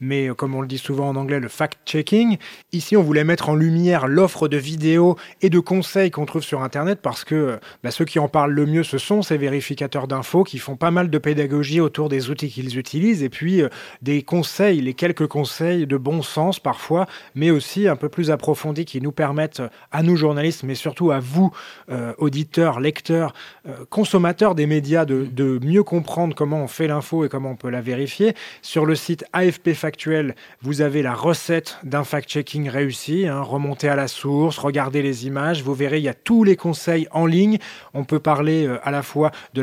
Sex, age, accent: male, 30-49, French